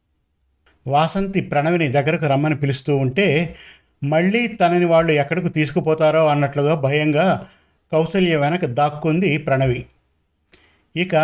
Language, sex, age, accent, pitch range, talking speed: Telugu, male, 50-69, native, 135-170 Hz, 95 wpm